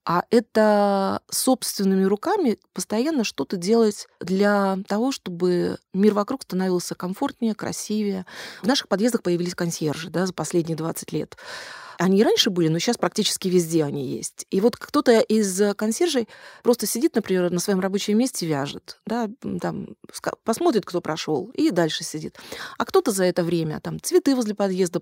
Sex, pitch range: female, 180-245 Hz